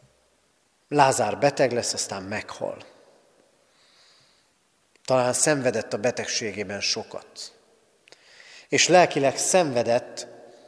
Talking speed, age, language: 75 wpm, 30-49, Hungarian